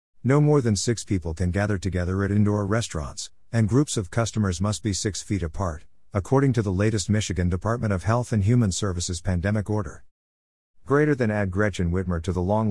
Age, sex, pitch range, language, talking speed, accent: 50-69, male, 85-115 Hz, English, 195 wpm, American